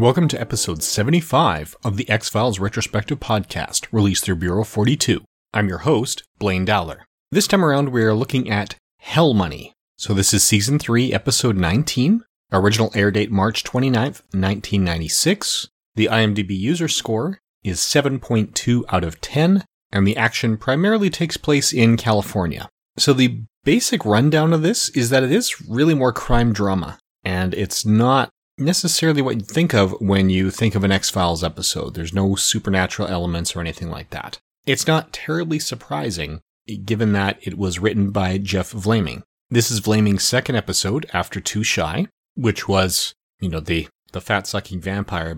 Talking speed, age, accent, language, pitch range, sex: 160 wpm, 30-49, American, English, 95-125 Hz, male